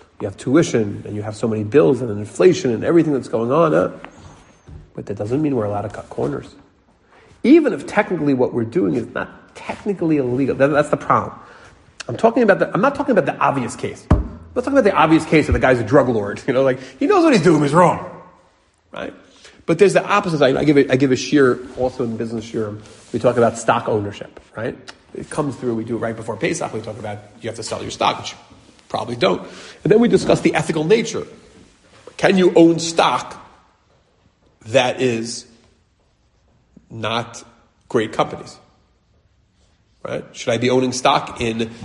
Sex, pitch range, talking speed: male, 110-150 Hz, 200 wpm